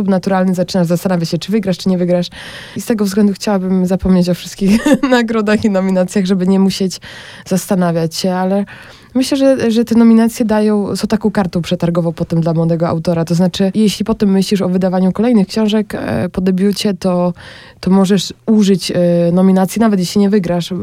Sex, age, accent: female, 20-39, native